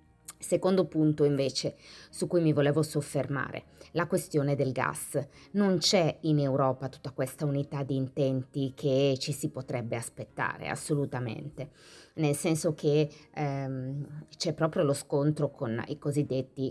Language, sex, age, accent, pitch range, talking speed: Italian, female, 20-39, native, 135-170 Hz, 135 wpm